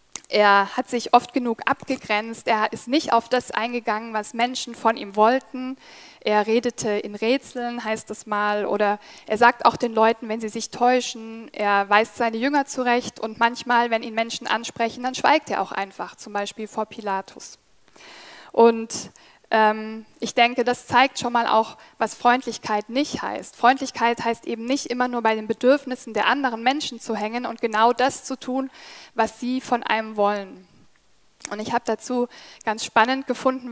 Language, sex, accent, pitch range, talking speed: German, female, German, 220-250 Hz, 175 wpm